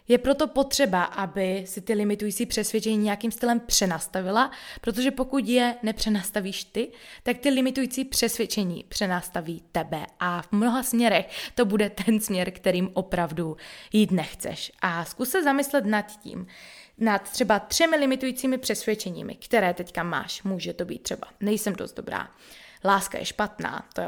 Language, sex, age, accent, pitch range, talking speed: Czech, female, 20-39, native, 180-235 Hz, 145 wpm